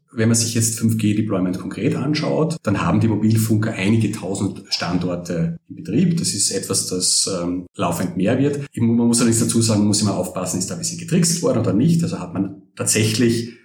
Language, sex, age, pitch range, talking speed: German, male, 40-59, 95-130 Hz, 200 wpm